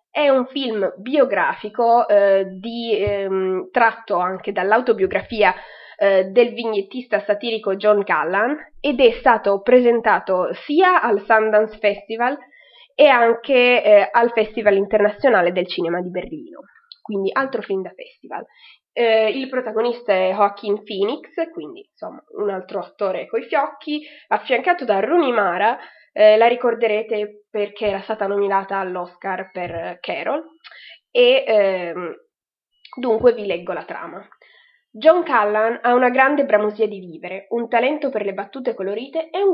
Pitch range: 200-265 Hz